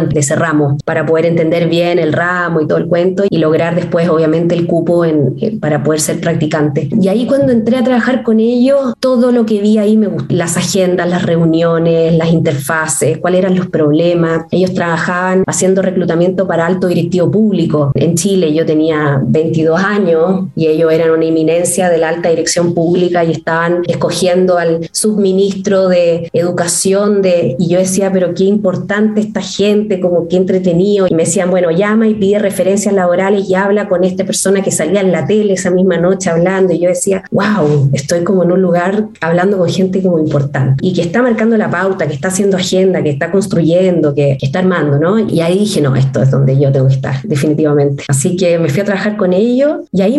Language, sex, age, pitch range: Spanish, female, 20-39, 165-200 Hz